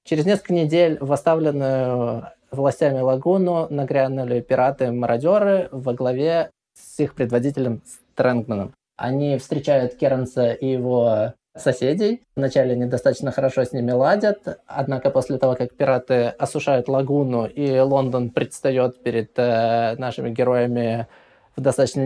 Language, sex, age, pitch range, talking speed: Russian, male, 20-39, 125-145 Hz, 115 wpm